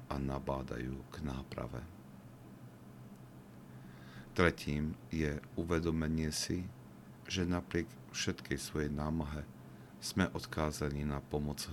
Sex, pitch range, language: male, 65-80 Hz, Slovak